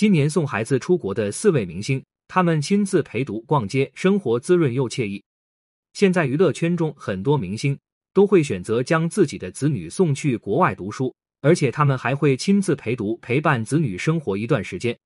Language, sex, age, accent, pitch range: Chinese, male, 20-39, native, 125-170 Hz